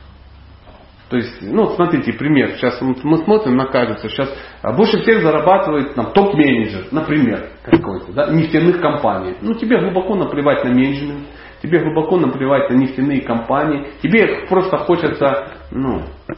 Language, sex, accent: Russian, male, native